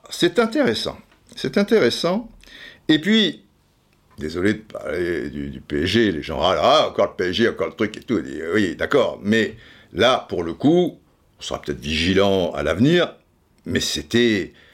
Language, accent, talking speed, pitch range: French, French, 165 wpm, 120-180 Hz